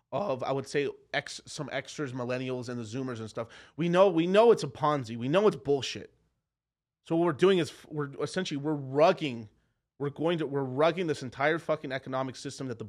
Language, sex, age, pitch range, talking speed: English, male, 30-49, 125-160 Hz, 210 wpm